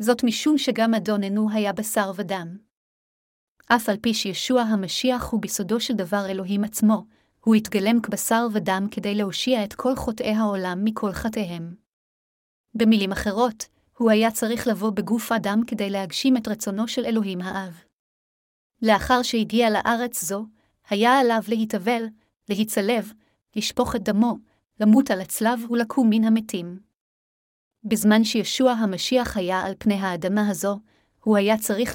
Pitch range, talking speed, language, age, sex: 200-230 Hz, 135 wpm, Hebrew, 30-49, female